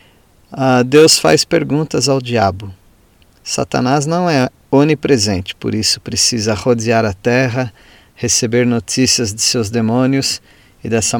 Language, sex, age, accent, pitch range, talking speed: Portuguese, male, 40-59, Brazilian, 110-135 Hz, 120 wpm